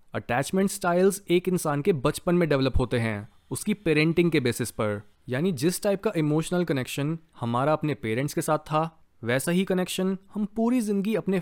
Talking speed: 180 wpm